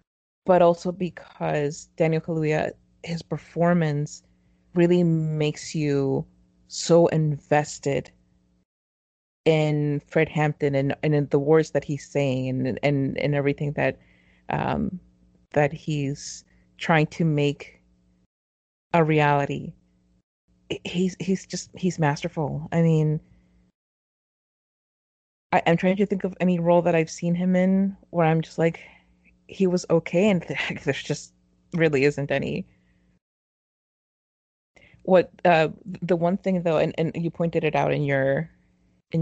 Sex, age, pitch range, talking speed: female, 30-49, 130-170 Hz, 130 wpm